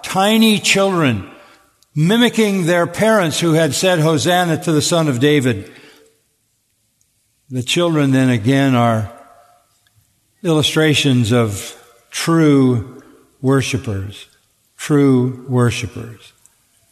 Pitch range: 125-170 Hz